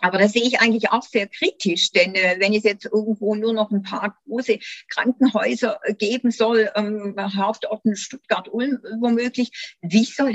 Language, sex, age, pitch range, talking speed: German, female, 50-69, 195-240 Hz, 160 wpm